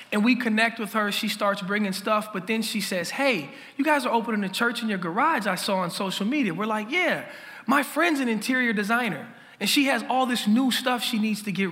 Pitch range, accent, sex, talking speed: 175-235 Hz, American, male, 240 wpm